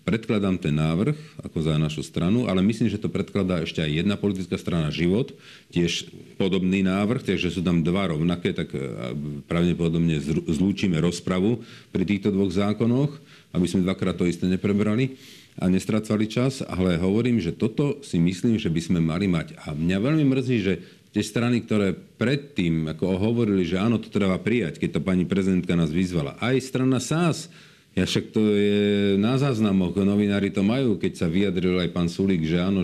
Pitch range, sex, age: 85-110 Hz, male, 50-69